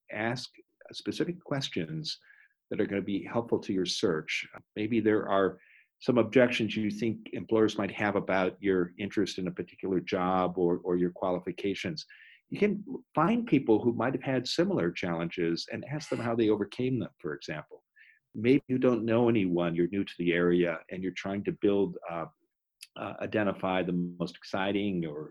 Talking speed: 175 wpm